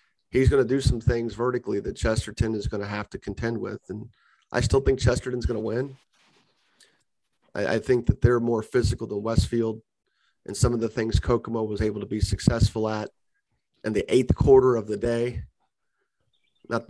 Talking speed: 190 wpm